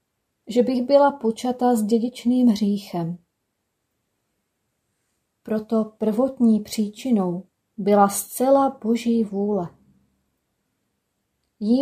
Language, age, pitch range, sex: Czech, 30-49, 205-250 Hz, female